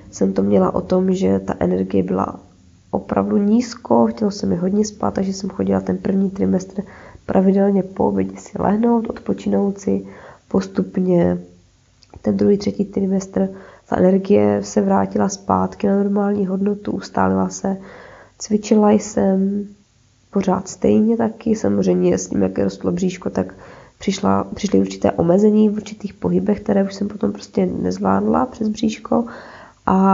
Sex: female